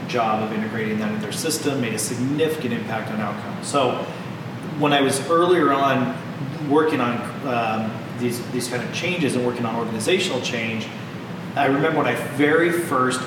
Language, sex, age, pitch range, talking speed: English, male, 30-49, 120-150 Hz, 170 wpm